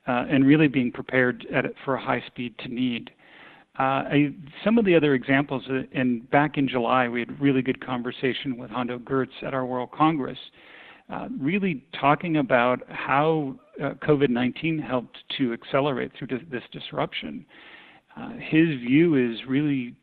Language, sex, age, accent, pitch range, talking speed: English, male, 50-69, American, 125-145 Hz, 160 wpm